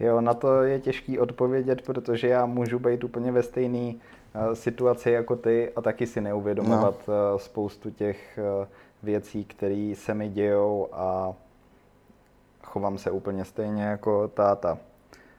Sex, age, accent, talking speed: male, 20-39, native, 135 wpm